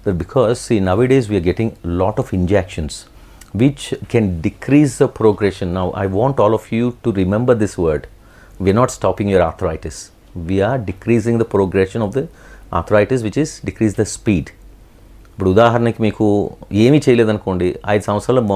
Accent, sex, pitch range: Indian, male, 95-125 Hz